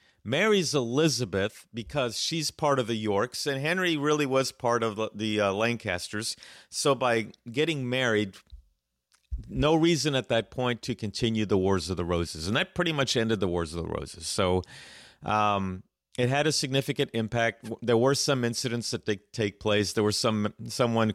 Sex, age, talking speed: male, 40-59, 180 wpm